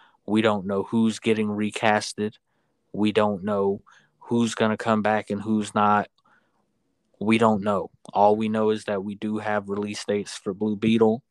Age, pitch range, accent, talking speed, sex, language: 20-39, 100-110 Hz, American, 175 wpm, male, English